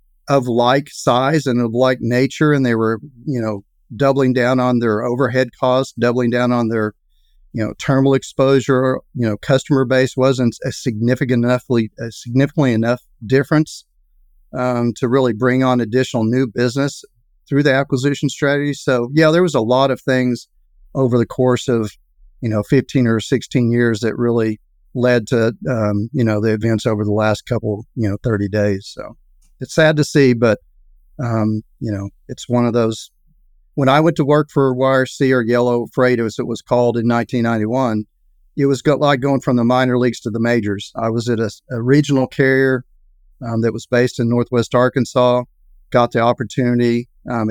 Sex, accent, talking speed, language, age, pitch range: male, American, 180 wpm, English, 40-59, 115-130 Hz